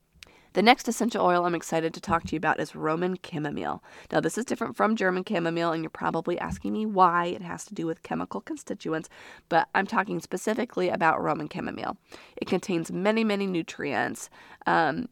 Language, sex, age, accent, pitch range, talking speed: English, female, 30-49, American, 155-195 Hz, 185 wpm